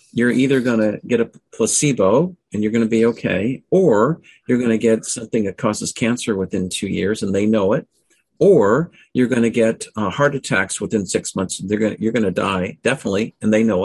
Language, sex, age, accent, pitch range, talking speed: English, male, 50-69, American, 105-140 Hz, 220 wpm